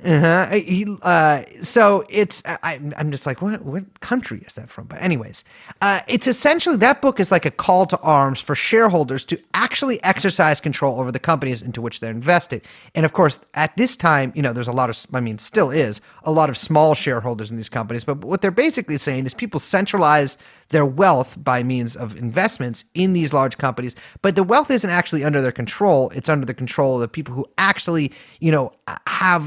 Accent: American